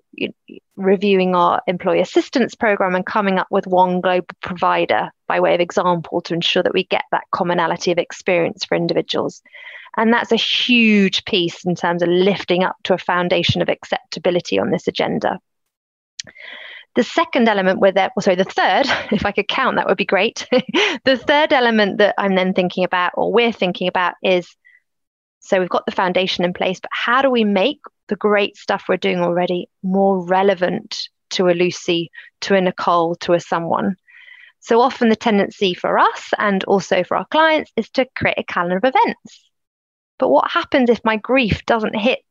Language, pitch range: English, 185-235 Hz